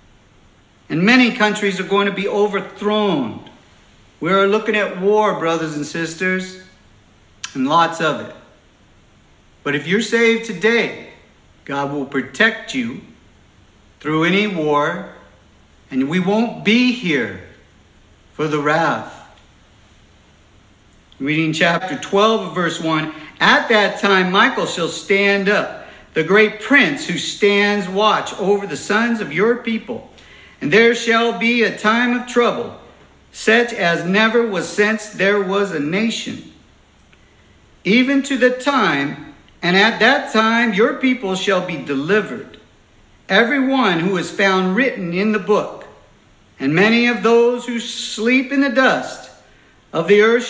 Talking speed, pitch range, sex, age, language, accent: 135 wpm, 165-230 Hz, male, 50-69, English, American